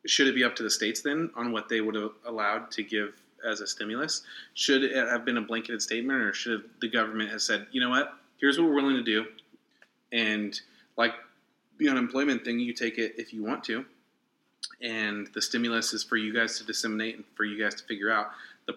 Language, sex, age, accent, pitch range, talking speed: English, male, 20-39, American, 110-120 Hz, 225 wpm